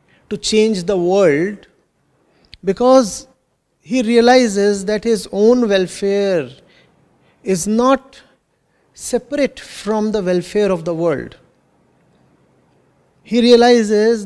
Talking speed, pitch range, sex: 95 wpm, 190-230 Hz, male